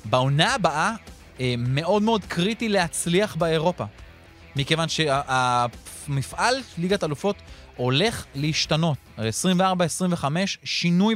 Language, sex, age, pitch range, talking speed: Hebrew, male, 30-49, 125-185 Hz, 80 wpm